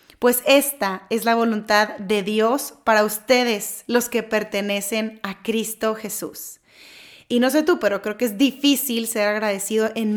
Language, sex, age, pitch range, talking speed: Spanish, female, 20-39, 210-255 Hz, 160 wpm